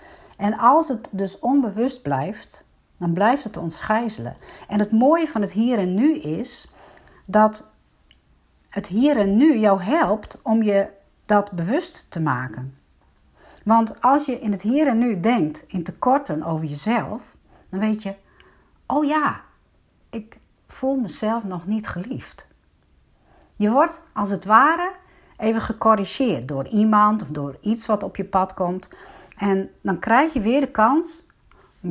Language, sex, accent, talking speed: Dutch, female, Dutch, 150 wpm